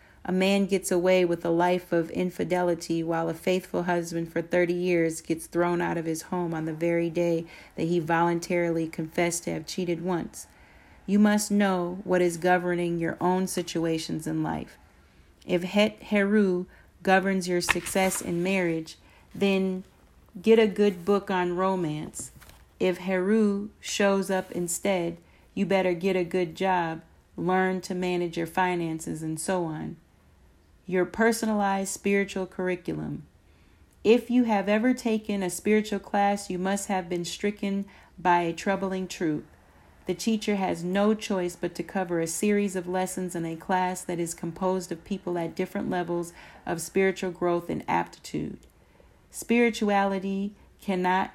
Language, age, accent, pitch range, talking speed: English, 40-59, American, 170-195 Hz, 150 wpm